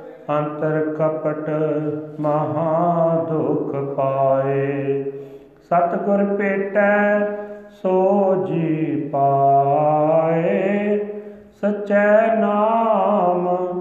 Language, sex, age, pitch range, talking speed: Punjabi, male, 40-59, 140-175 Hz, 50 wpm